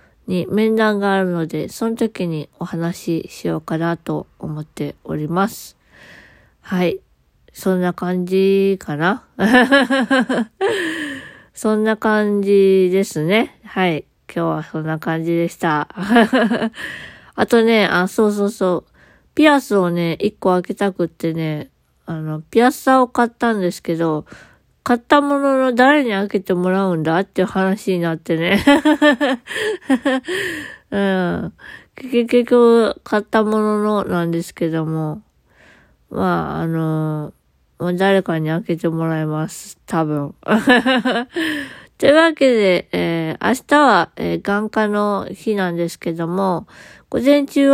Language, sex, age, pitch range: Japanese, female, 20-39, 170-235 Hz